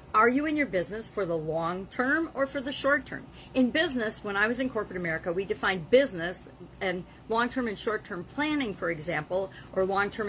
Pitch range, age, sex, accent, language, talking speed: 175-245 Hz, 50-69, female, American, English, 185 wpm